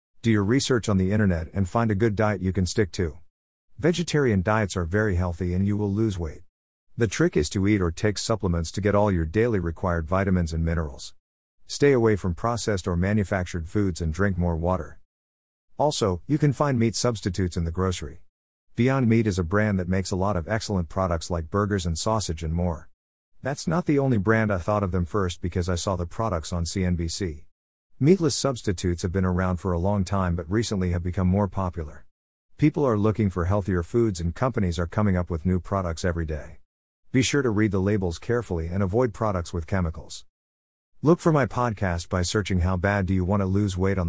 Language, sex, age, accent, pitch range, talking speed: English, male, 50-69, American, 85-110 Hz, 210 wpm